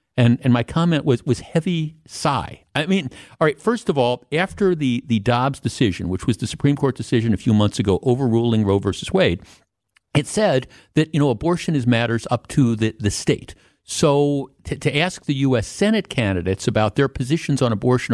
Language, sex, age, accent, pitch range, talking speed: English, male, 50-69, American, 110-145 Hz, 200 wpm